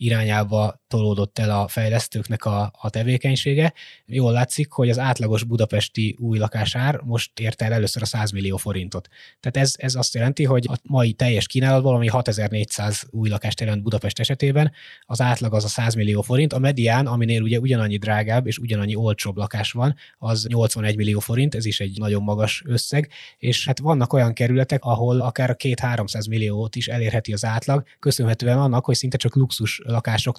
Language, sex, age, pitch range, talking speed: Hungarian, male, 20-39, 110-130 Hz, 175 wpm